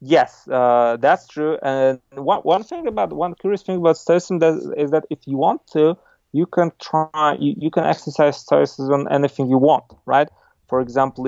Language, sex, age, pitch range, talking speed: English, male, 30-49, 120-150 Hz, 185 wpm